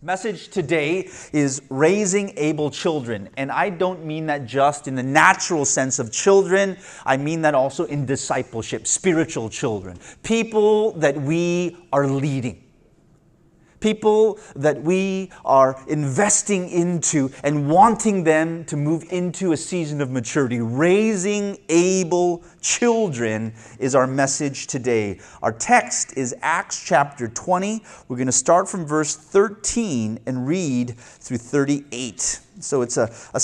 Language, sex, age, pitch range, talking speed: English, male, 30-49, 120-170 Hz, 135 wpm